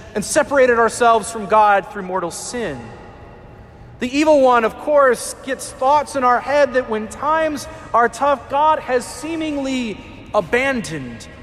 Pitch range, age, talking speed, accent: 170-265 Hz, 30-49, 140 wpm, American